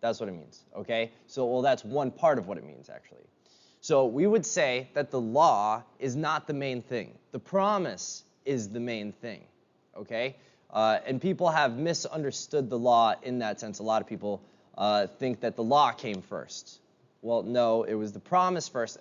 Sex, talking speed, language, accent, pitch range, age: male, 195 wpm, English, American, 105-135 Hz, 20-39